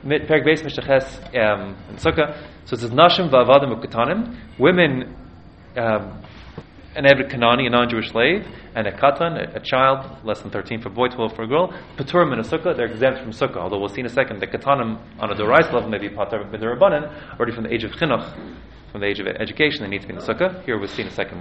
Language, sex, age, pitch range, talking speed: English, male, 20-39, 105-140 Hz, 235 wpm